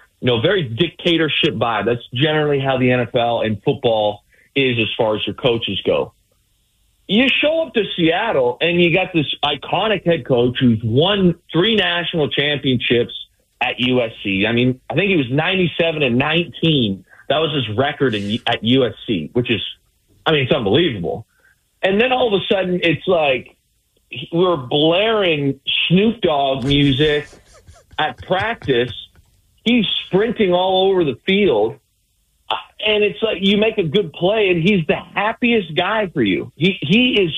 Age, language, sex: 40-59, English, male